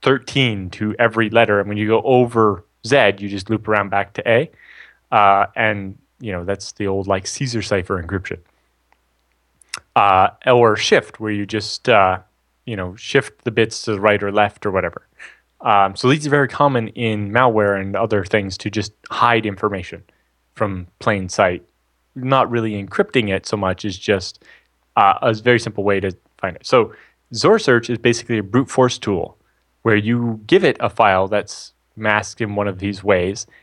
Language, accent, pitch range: English, American, 95-115 Hz